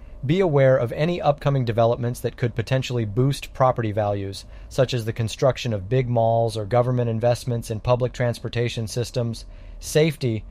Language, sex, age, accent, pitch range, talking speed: English, male, 30-49, American, 110-135 Hz, 155 wpm